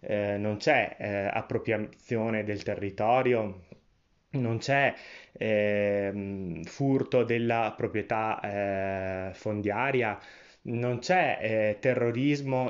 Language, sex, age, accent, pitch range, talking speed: Italian, male, 20-39, native, 100-125 Hz, 75 wpm